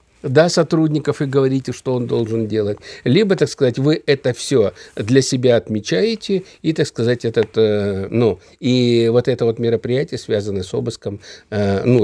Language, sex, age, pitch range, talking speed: Russian, male, 50-69, 110-145 Hz, 155 wpm